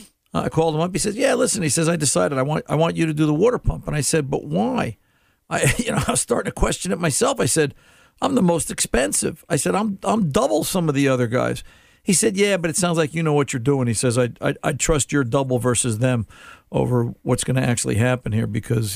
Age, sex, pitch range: 50-69, male, 120-160 Hz